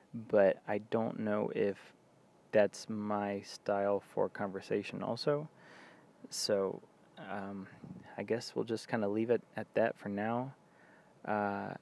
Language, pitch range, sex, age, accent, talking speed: English, 100-120 Hz, male, 20-39, American, 130 wpm